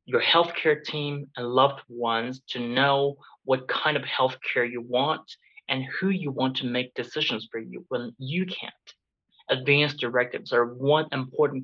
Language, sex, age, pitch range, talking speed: English, male, 30-49, 125-165 Hz, 165 wpm